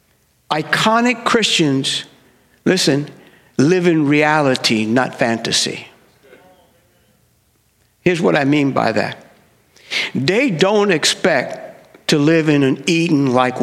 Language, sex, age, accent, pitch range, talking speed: English, male, 60-79, American, 150-225 Hz, 95 wpm